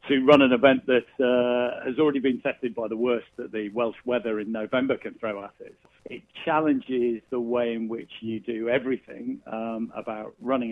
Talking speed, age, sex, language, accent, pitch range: 195 wpm, 50-69, male, English, British, 115-135 Hz